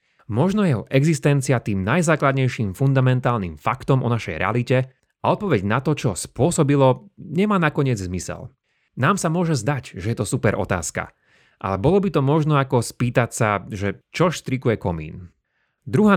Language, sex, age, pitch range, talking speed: Slovak, male, 30-49, 105-140 Hz, 150 wpm